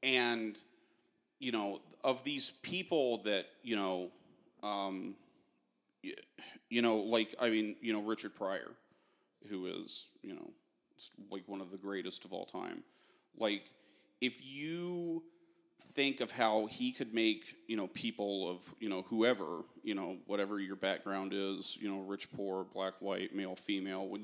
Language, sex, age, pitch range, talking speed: English, male, 30-49, 100-125 Hz, 155 wpm